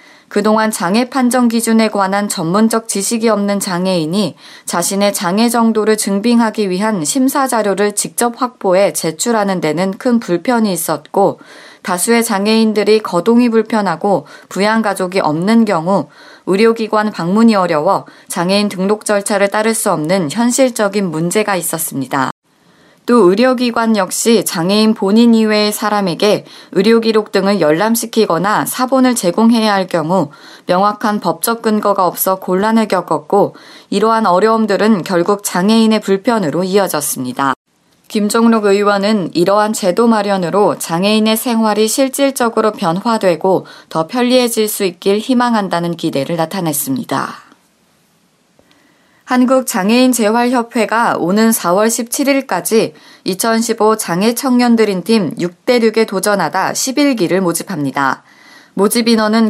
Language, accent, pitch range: Korean, native, 185-230 Hz